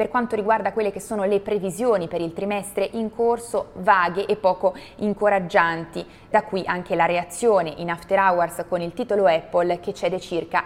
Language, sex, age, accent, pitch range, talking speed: Italian, female, 20-39, native, 175-215 Hz, 180 wpm